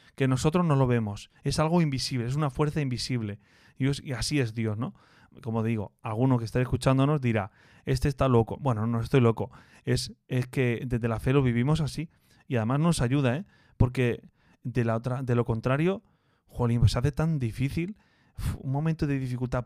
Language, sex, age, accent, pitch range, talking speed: Spanish, male, 30-49, Spanish, 120-145 Hz, 185 wpm